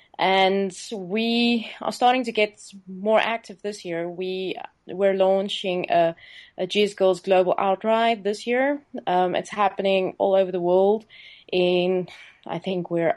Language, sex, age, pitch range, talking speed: English, female, 20-39, 180-205 Hz, 150 wpm